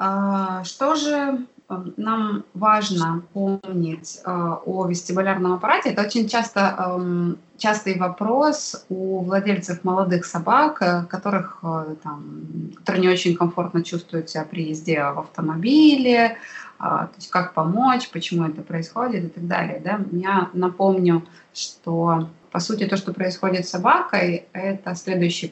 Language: Russian